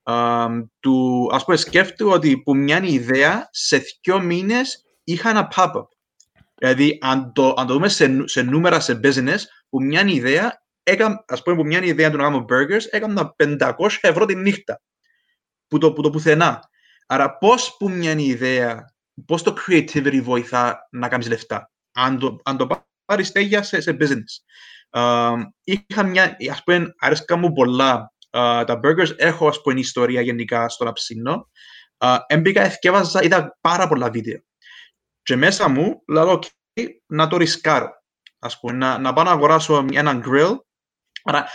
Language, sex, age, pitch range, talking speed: Greek, male, 20-39, 130-175 Hz, 170 wpm